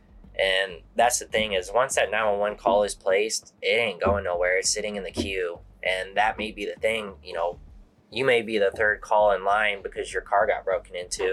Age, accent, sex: 20-39, American, male